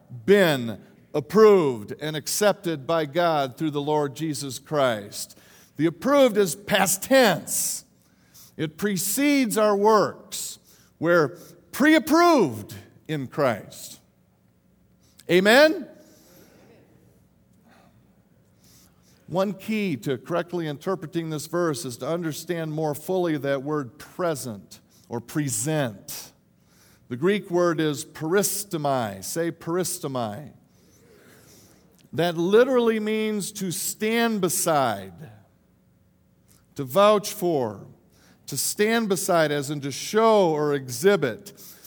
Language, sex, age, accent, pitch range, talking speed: English, male, 50-69, American, 150-215 Hz, 95 wpm